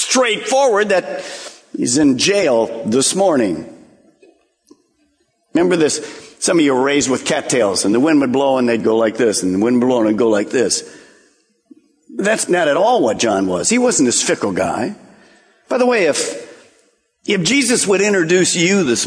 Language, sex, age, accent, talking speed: English, male, 50-69, American, 185 wpm